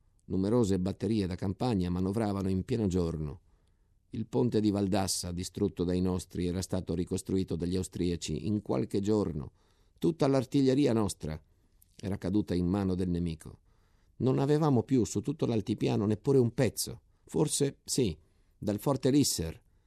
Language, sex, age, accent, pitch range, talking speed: Italian, male, 50-69, native, 90-110 Hz, 140 wpm